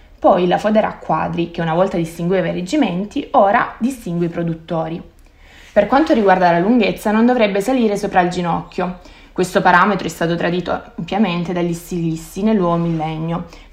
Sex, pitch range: female, 170-215 Hz